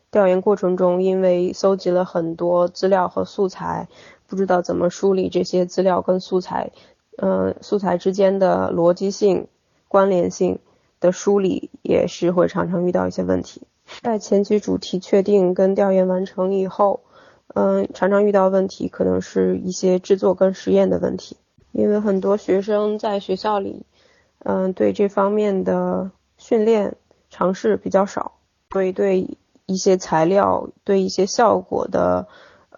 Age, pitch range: 20-39, 175-200 Hz